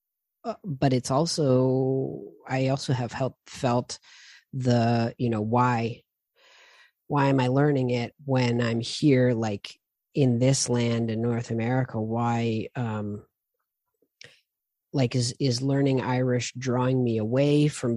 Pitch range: 115-140 Hz